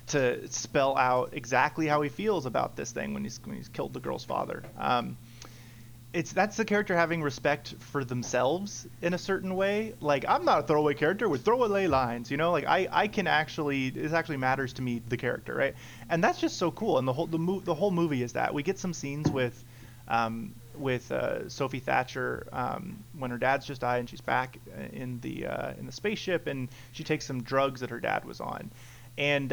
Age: 30-49